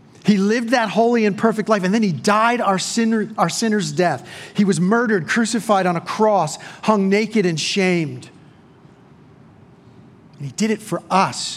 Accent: American